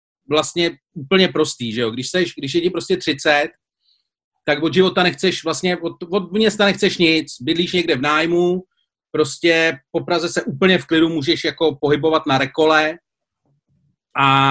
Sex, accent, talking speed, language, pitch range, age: male, native, 150 wpm, Czech, 155-190 Hz, 40-59